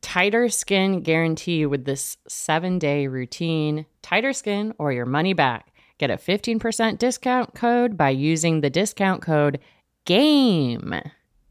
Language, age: English, 30-49